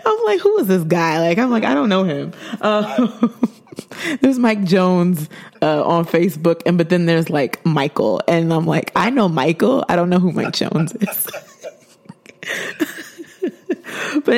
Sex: female